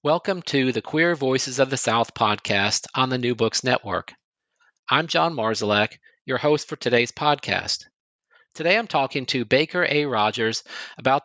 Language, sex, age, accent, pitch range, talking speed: English, male, 40-59, American, 115-145 Hz, 160 wpm